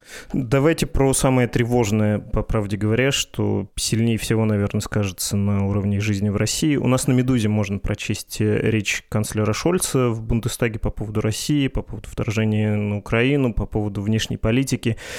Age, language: 20-39, Russian